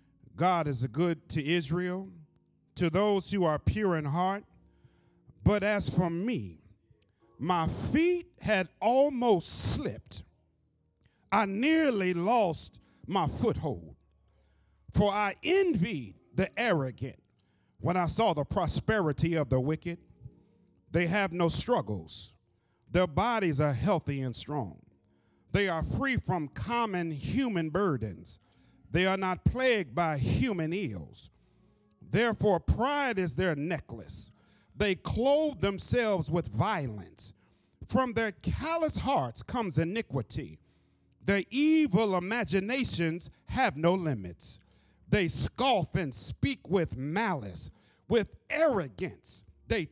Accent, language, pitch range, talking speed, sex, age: American, English, 130-205 Hz, 115 wpm, male, 50-69